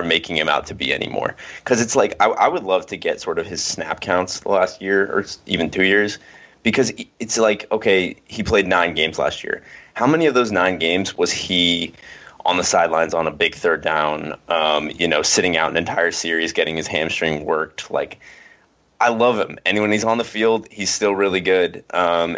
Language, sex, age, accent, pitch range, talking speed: English, male, 20-39, American, 85-100 Hz, 215 wpm